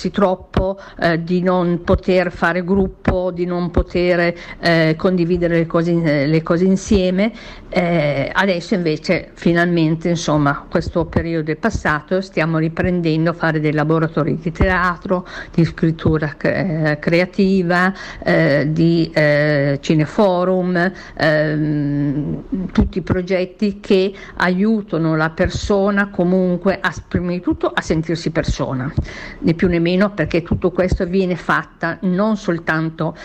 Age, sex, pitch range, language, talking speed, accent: 50-69, female, 155-185 Hz, Italian, 125 wpm, native